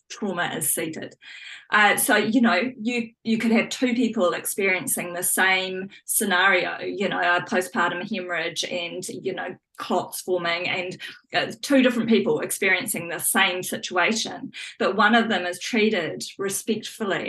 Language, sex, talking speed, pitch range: English, female, 150 wpm, 185-235 Hz